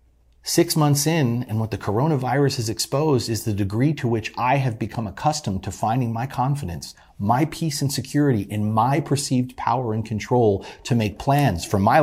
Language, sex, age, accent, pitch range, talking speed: English, male, 40-59, American, 100-140 Hz, 185 wpm